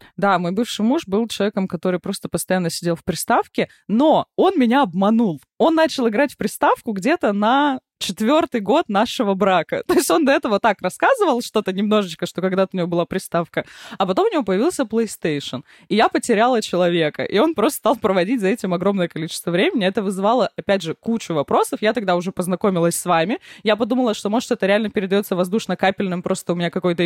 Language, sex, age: Russian, female, 20-39